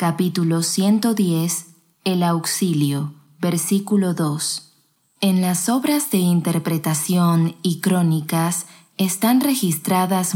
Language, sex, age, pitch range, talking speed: Spanish, female, 20-39, 160-180 Hz, 85 wpm